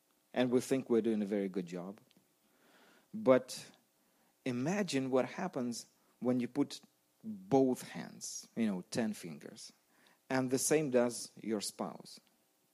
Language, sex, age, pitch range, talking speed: English, male, 40-59, 85-130 Hz, 130 wpm